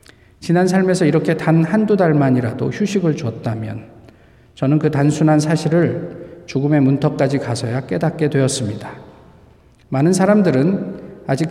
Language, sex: Korean, male